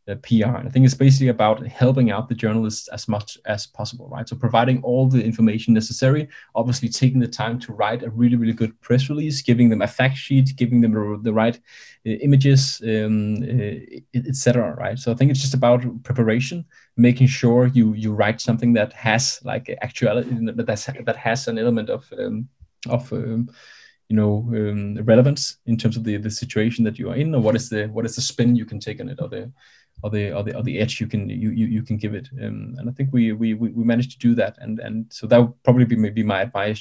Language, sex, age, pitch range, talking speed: English, male, 20-39, 110-120 Hz, 230 wpm